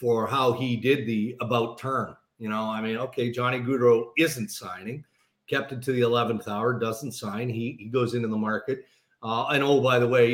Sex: male